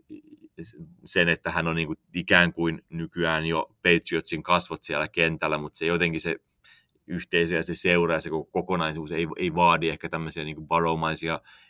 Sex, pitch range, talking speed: male, 85-95 Hz, 165 wpm